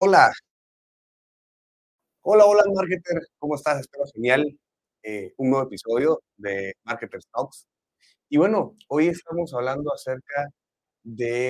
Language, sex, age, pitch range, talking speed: Spanish, male, 30-49, 115-155 Hz, 115 wpm